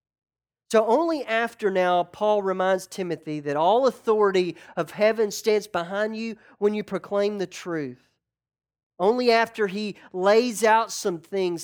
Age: 40-59